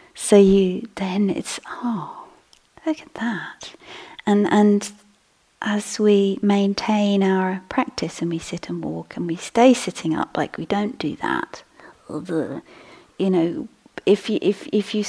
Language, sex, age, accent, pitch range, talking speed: English, female, 40-59, British, 185-230 Hz, 145 wpm